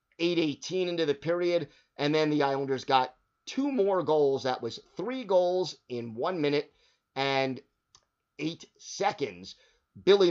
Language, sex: English, male